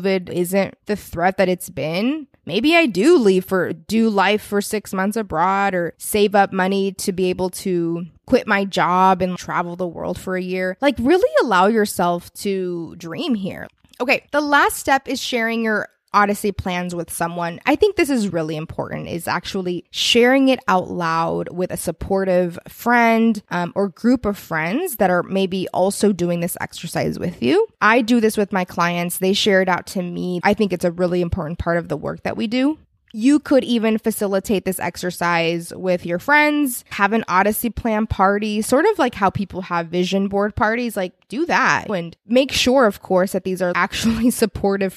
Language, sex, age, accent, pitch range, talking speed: English, female, 20-39, American, 180-230 Hz, 195 wpm